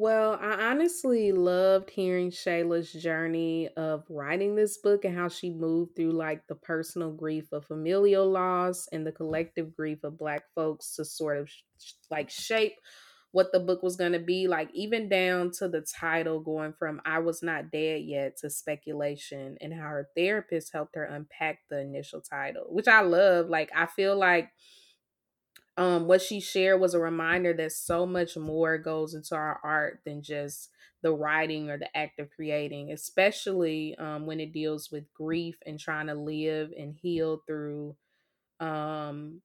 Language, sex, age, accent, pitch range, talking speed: English, female, 20-39, American, 155-180 Hz, 170 wpm